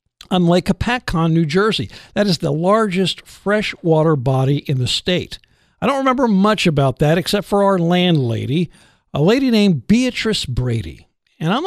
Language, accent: English, American